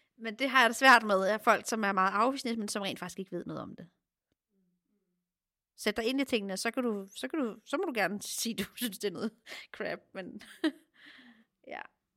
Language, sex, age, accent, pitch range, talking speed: Danish, female, 30-49, native, 195-245 Hz, 235 wpm